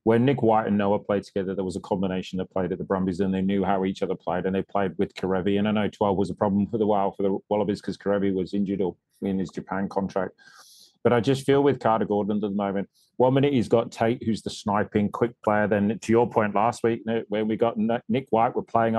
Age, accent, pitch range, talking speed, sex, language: 30-49, British, 100-115 Hz, 260 wpm, male, English